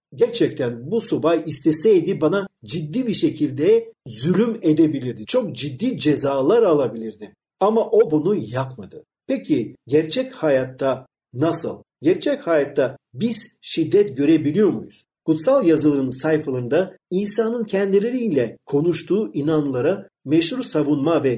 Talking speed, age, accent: 105 wpm, 50-69, native